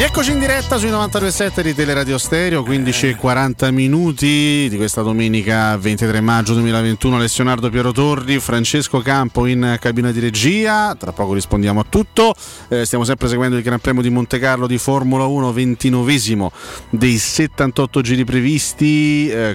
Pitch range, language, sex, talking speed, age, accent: 110-135 Hz, Italian, male, 155 wpm, 30-49, native